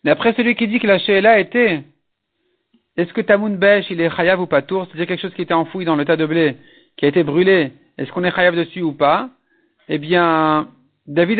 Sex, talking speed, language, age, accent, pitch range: male, 245 wpm, French, 50-69, French, 165-220 Hz